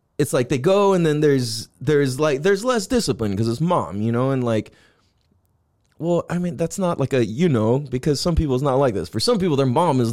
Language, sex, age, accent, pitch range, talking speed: English, male, 20-39, American, 110-160 Hz, 245 wpm